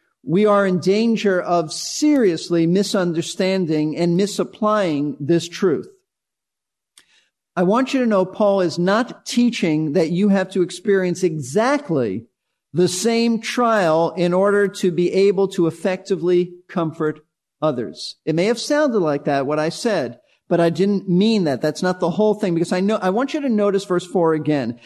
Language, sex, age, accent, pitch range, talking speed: English, male, 50-69, American, 180-225 Hz, 165 wpm